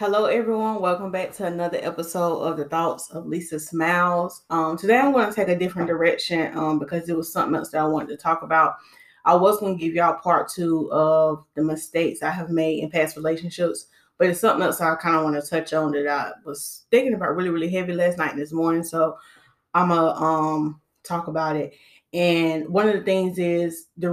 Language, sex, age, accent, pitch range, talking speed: English, female, 10-29, American, 160-190 Hz, 225 wpm